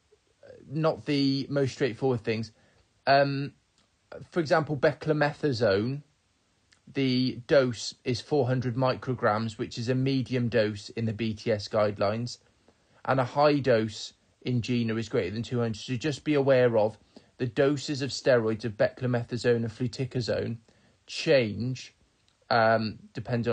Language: English